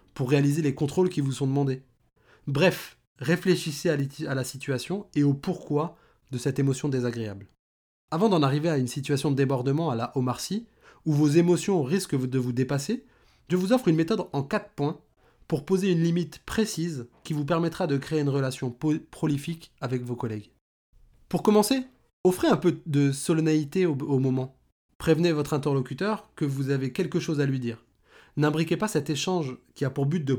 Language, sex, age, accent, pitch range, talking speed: French, male, 20-39, French, 135-175 Hz, 185 wpm